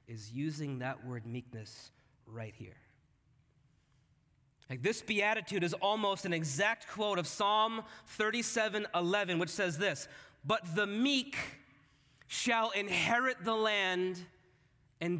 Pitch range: 165-230 Hz